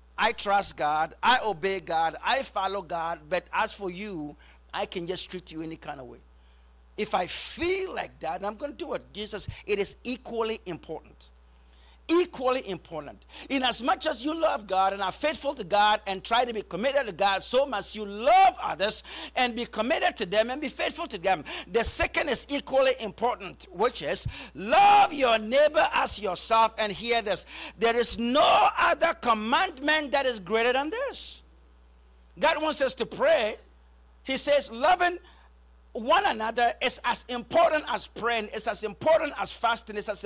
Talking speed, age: 180 wpm, 50-69